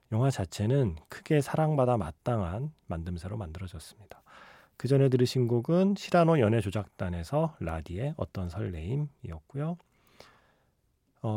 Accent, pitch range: native, 105-145 Hz